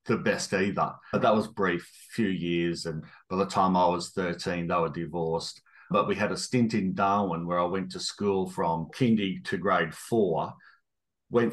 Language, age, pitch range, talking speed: English, 40-59, 90-115 Hz, 195 wpm